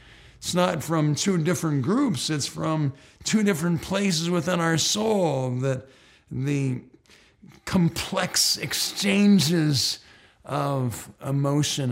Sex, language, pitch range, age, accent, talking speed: male, English, 120-165 Hz, 50-69, American, 100 wpm